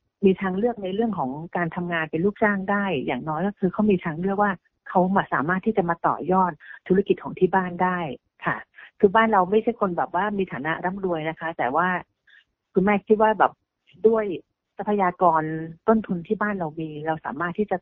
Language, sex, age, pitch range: Thai, female, 30-49, 160-200 Hz